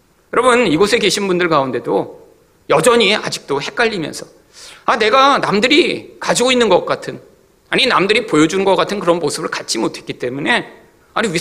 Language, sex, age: Korean, male, 40-59